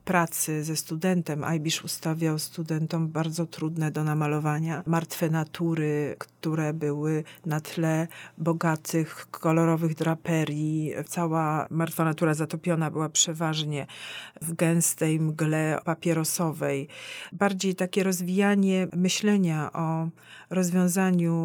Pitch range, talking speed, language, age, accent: 155-180 Hz, 100 wpm, Polish, 40-59, native